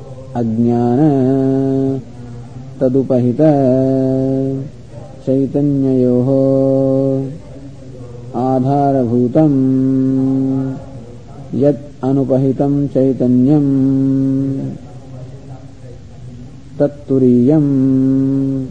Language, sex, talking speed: English, male, 30 wpm